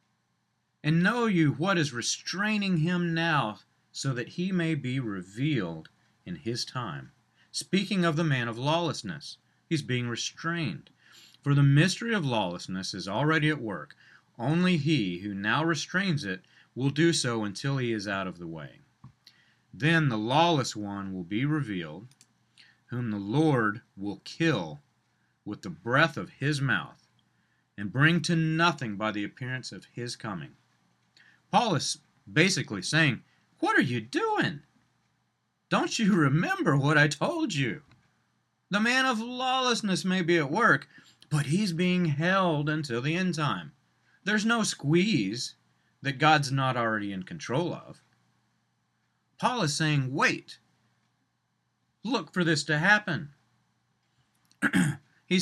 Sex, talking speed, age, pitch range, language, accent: male, 140 wpm, 40-59, 120-170 Hz, English, American